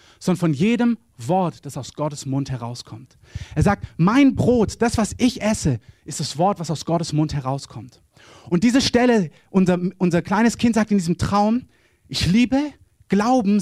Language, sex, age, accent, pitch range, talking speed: German, male, 30-49, German, 140-210 Hz, 170 wpm